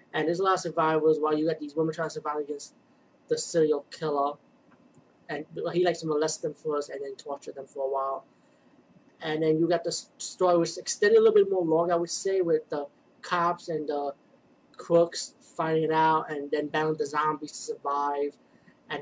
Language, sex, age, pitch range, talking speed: English, male, 20-39, 150-170 Hz, 205 wpm